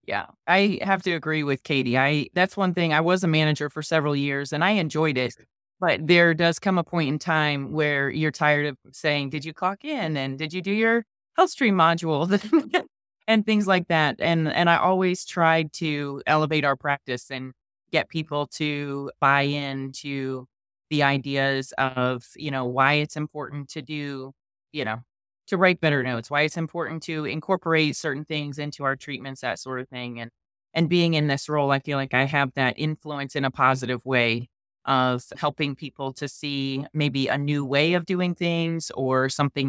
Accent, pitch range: American, 135-165 Hz